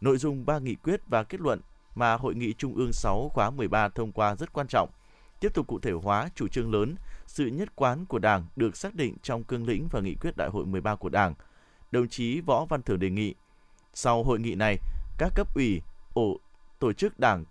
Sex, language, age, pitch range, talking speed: male, Vietnamese, 20-39, 110-145 Hz, 225 wpm